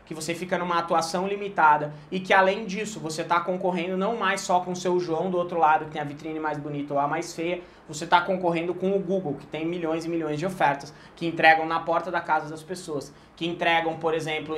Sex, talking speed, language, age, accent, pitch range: male, 240 wpm, Portuguese, 20-39, Brazilian, 145-175 Hz